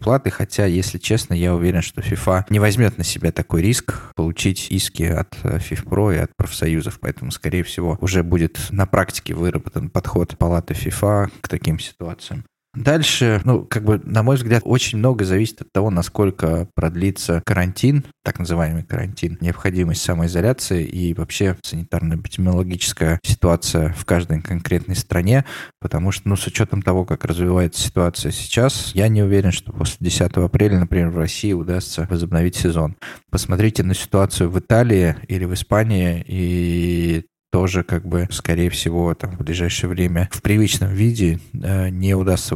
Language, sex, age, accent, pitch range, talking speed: Russian, male, 20-39, native, 85-110 Hz, 155 wpm